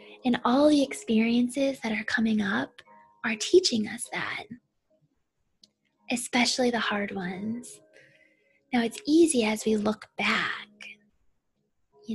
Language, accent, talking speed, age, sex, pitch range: English, American, 120 wpm, 20-39, female, 215-250 Hz